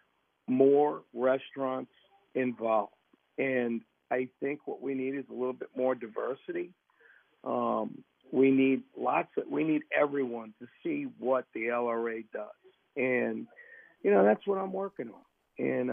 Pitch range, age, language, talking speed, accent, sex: 120-165 Hz, 50-69, English, 145 wpm, American, male